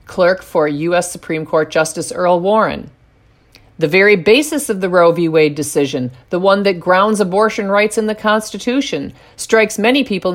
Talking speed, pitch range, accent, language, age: 170 wpm, 165-220 Hz, American, English, 50-69